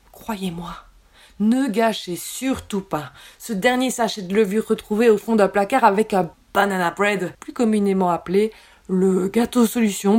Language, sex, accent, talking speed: French, female, French, 145 wpm